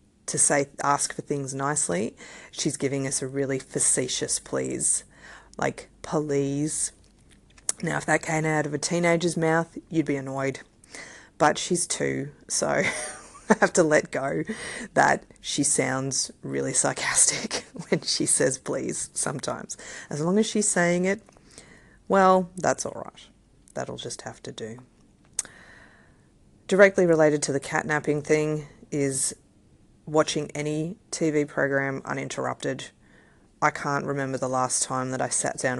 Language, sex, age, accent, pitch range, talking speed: English, female, 30-49, Australian, 135-160 Hz, 140 wpm